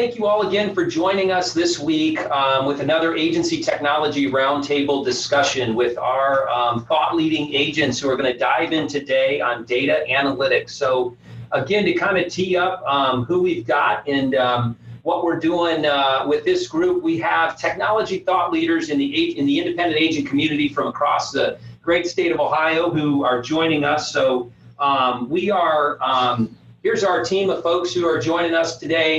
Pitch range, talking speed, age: 140-195 Hz, 185 wpm, 40-59